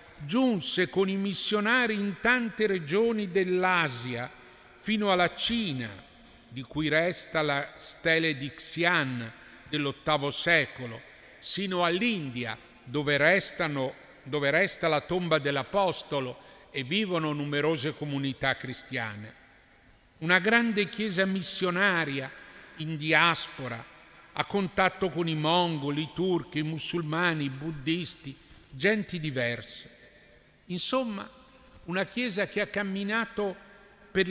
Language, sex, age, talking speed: Italian, male, 50-69, 105 wpm